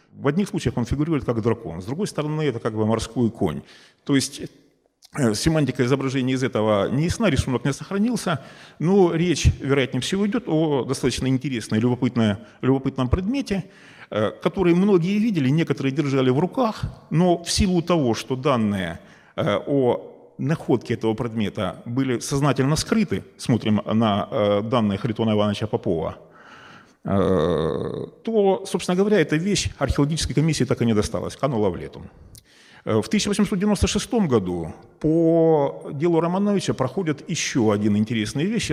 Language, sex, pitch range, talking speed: Russian, male, 115-170 Hz, 135 wpm